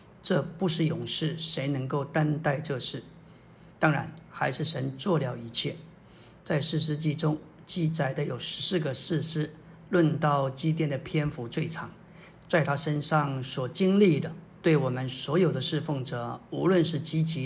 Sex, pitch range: male, 145-170 Hz